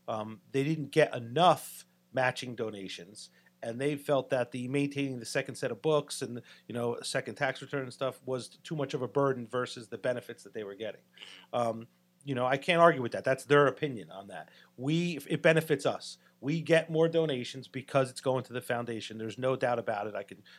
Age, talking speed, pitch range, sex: 40-59, 215 wpm, 115-140 Hz, male